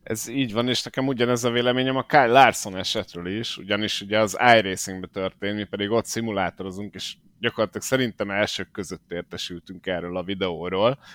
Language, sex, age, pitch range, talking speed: Hungarian, male, 30-49, 100-120 Hz, 170 wpm